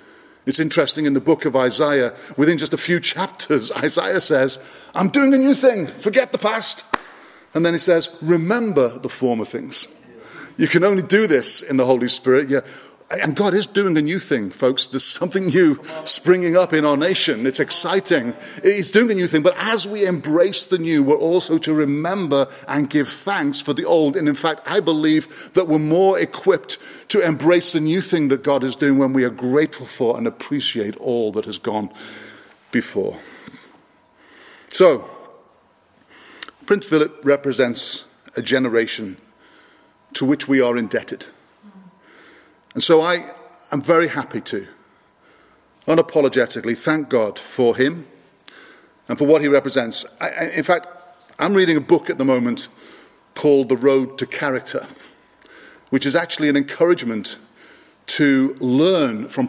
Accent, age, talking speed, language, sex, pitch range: British, 50-69, 160 wpm, English, male, 135-175 Hz